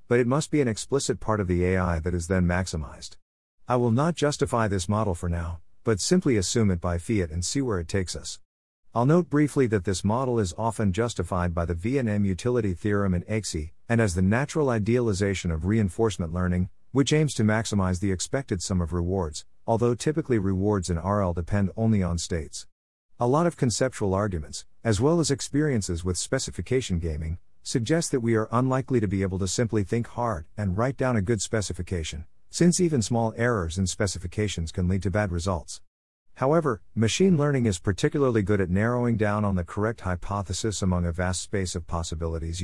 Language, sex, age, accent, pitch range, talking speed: English, male, 50-69, American, 90-115 Hz, 190 wpm